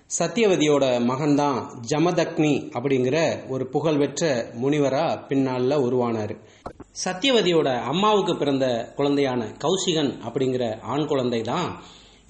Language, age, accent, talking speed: English, 30-49, Indian, 85 wpm